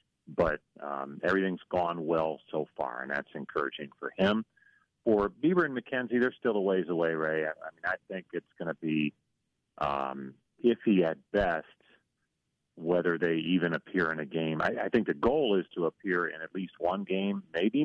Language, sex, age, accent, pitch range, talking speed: English, male, 40-59, American, 80-105 Hz, 190 wpm